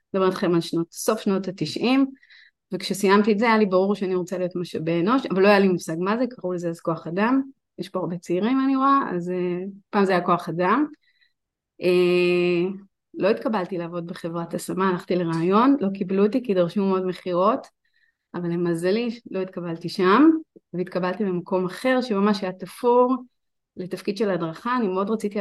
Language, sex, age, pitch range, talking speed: Hebrew, female, 30-49, 175-220 Hz, 170 wpm